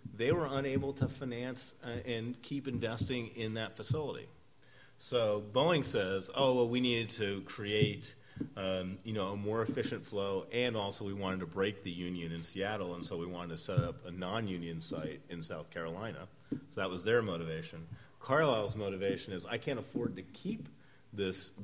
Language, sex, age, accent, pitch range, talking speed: English, male, 40-59, American, 95-120 Hz, 175 wpm